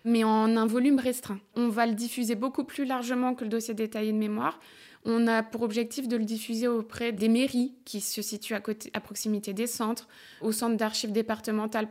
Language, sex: French, female